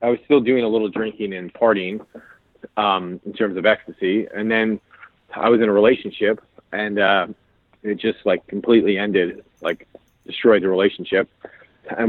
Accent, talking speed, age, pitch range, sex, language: American, 165 wpm, 30-49, 95-105 Hz, male, English